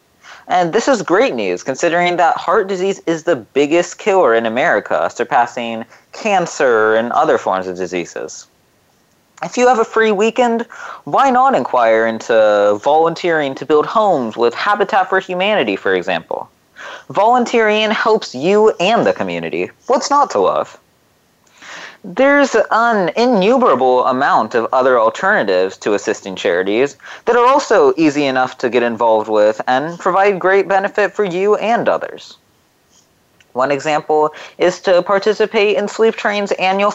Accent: American